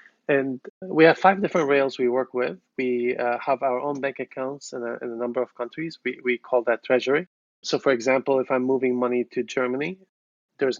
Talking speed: 205 wpm